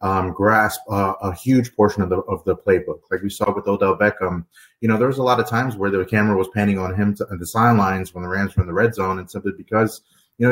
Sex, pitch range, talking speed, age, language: male, 95-110 Hz, 280 wpm, 30-49, English